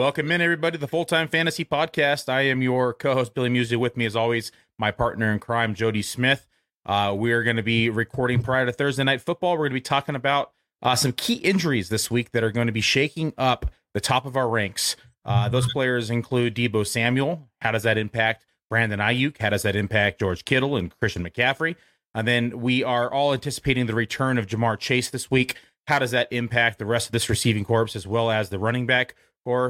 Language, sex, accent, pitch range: English, male, American, 115-140 Hz